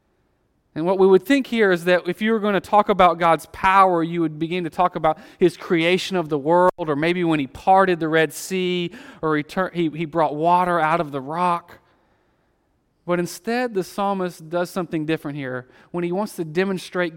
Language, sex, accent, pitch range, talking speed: English, male, American, 145-175 Hz, 200 wpm